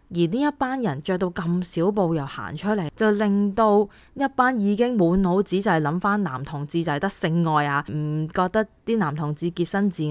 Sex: female